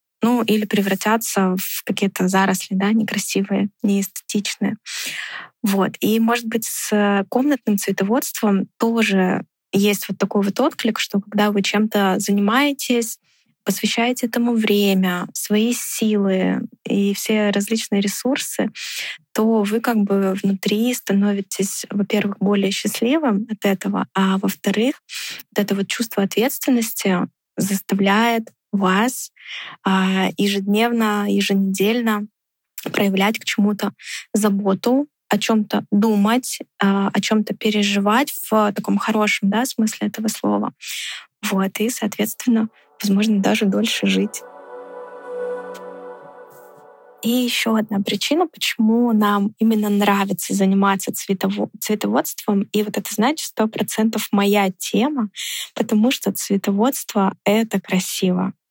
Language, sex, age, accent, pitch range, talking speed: Russian, female, 20-39, native, 200-230 Hz, 110 wpm